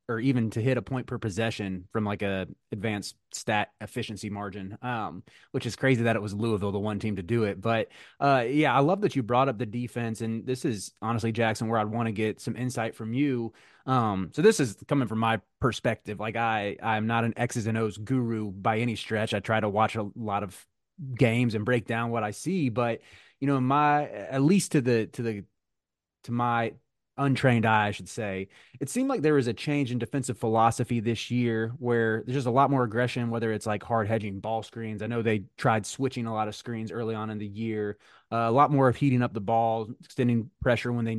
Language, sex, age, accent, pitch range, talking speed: English, male, 20-39, American, 110-125 Hz, 230 wpm